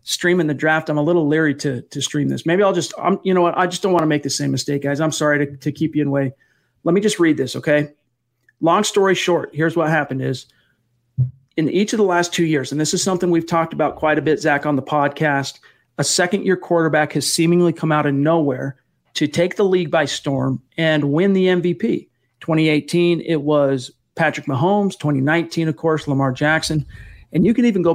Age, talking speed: 40-59, 225 wpm